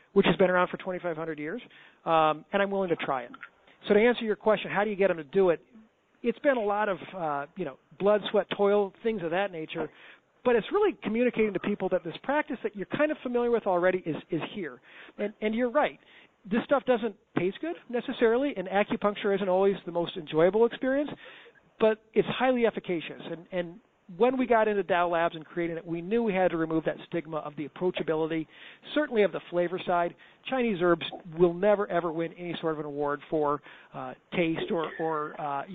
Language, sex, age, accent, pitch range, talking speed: English, male, 40-59, American, 165-215 Hz, 215 wpm